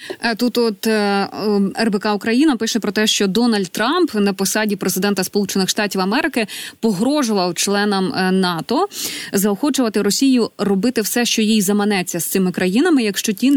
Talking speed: 135 wpm